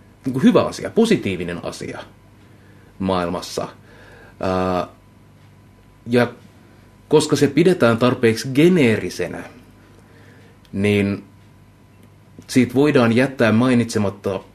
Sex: male